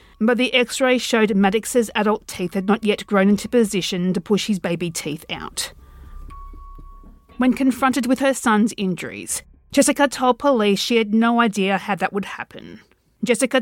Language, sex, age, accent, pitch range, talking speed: English, female, 40-59, Australian, 180-240 Hz, 165 wpm